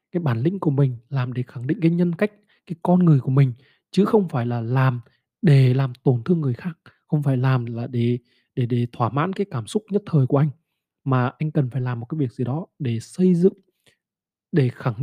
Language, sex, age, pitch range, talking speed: Vietnamese, male, 20-39, 130-170 Hz, 235 wpm